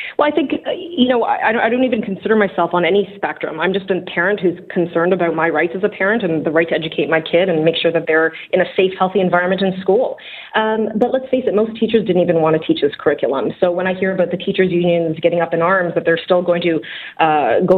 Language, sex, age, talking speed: English, female, 30-49, 265 wpm